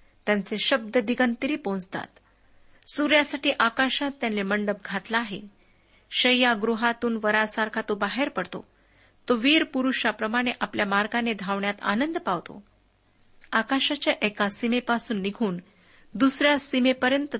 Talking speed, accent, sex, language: 100 wpm, native, female, Marathi